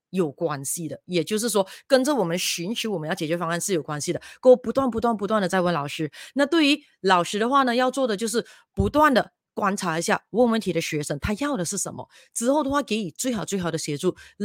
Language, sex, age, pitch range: Chinese, female, 30-49, 165-230 Hz